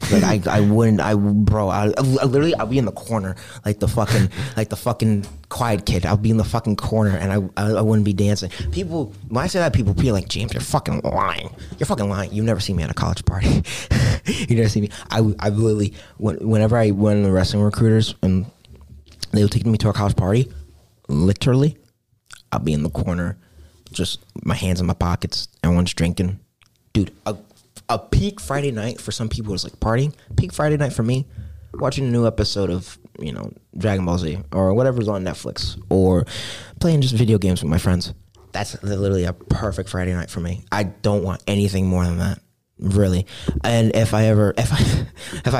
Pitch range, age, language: 95-115 Hz, 20-39, English